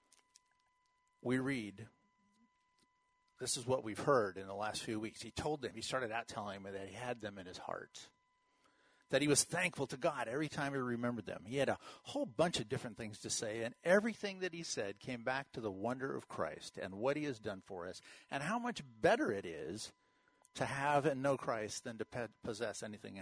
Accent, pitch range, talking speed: American, 110-175 Hz, 210 wpm